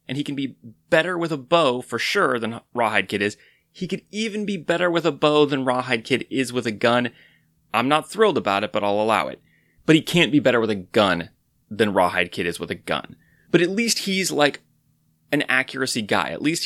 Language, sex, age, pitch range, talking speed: English, male, 30-49, 110-155 Hz, 225 wpm